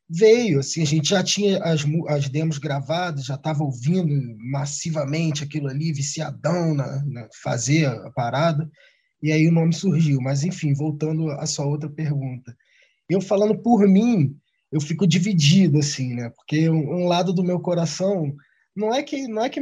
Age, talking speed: 20-39, 170 wpm